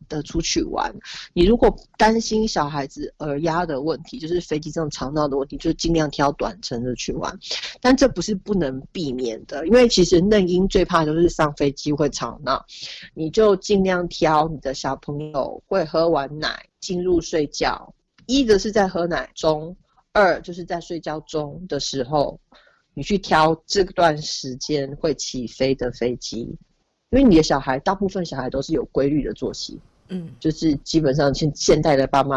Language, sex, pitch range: Chinese, female, 140-175 Hz